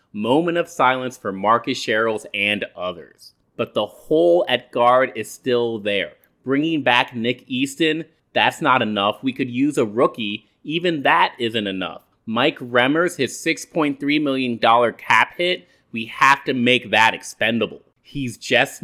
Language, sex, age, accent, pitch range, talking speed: English, male, 30-49, American, 115-145 Hz, 150 wpm